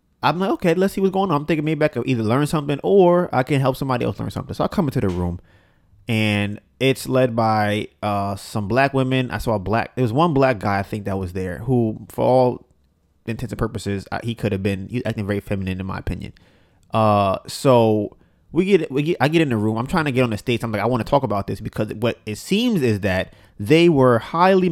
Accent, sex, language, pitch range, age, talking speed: American, male, English, 105-135 Hz, 20-39, 255 wpm